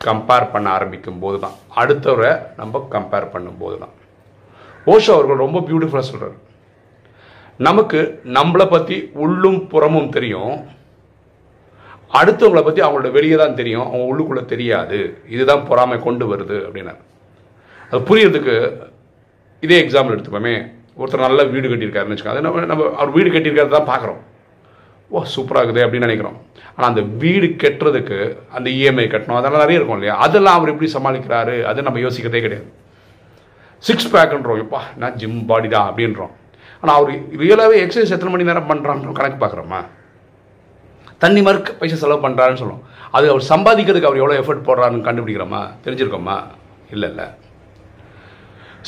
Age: 40-59